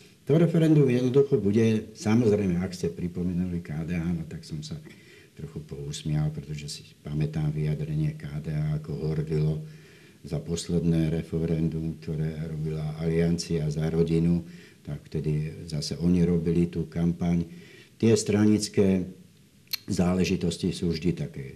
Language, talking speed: Slovak, 120 wpm